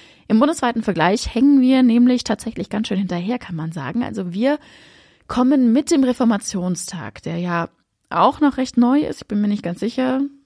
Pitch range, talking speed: 185-245 Hz, 185 wpm